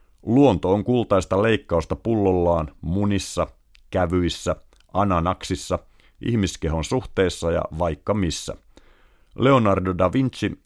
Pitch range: 85-100 Hz